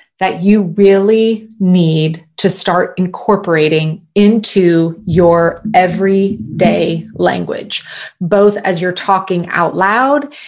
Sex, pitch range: female, 175-215 Hz